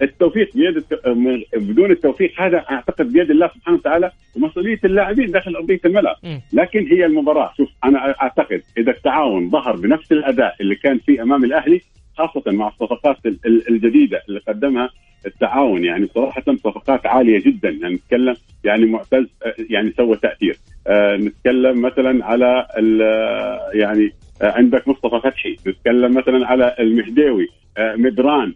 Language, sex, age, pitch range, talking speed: Arabic, male, 50-69, 115-180 Hz, 130 wpm